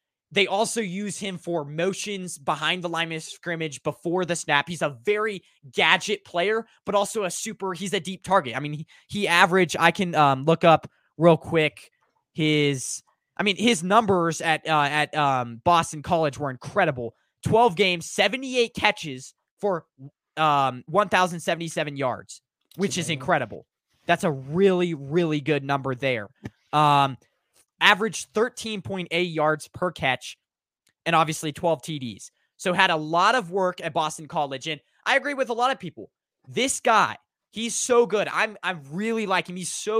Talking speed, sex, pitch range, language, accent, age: 165 wpm, male, 145-195 Hz, English, American, 20-39